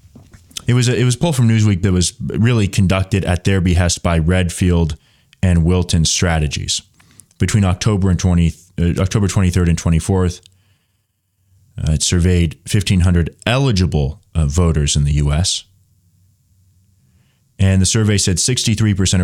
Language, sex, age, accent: English, male, 30-49, American